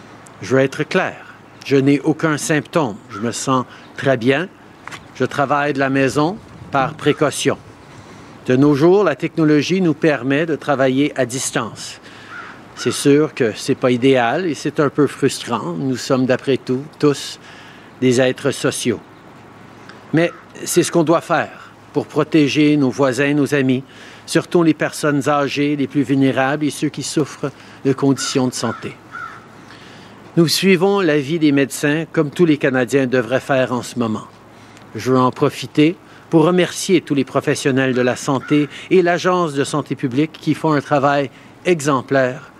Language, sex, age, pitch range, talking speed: French, male, 60-79, 130-155 Hz, 160 wpm